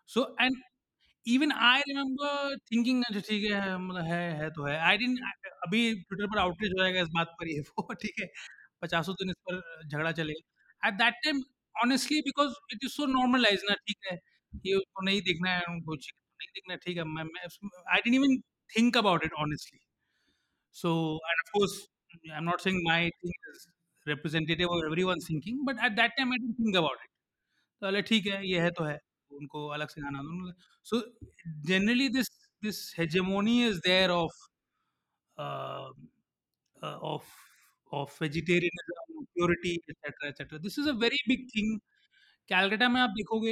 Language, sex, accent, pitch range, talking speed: Hindi, male, native, 170-230 Hz, 60 wpm